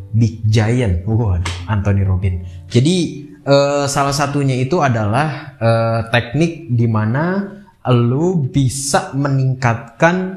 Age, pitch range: 20-39, 110-140 Hz